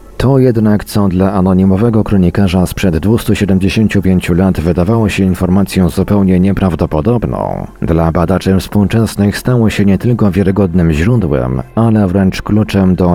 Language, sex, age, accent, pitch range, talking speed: Polish, male, 40-59, native, 90-105 Hz, 125 wpm